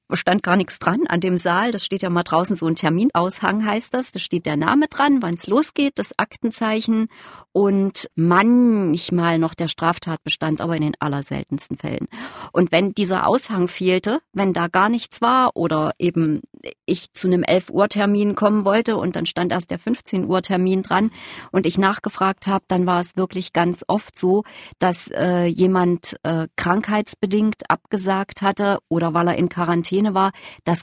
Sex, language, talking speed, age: female, German, 170 wpm, 40-59